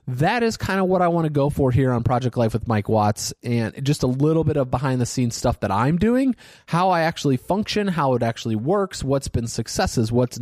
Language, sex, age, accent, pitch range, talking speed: English, male, 20-39, American, 110-145 Hz, 230 wpm